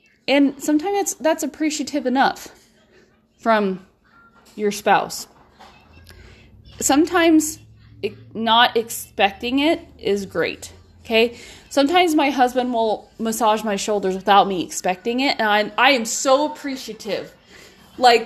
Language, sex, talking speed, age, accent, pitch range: English, female, 110 wpm, 20-39, American, 215-280 Hz